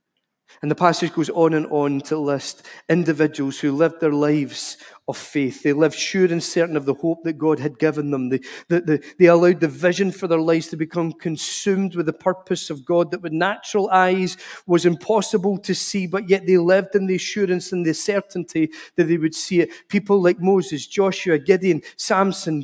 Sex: male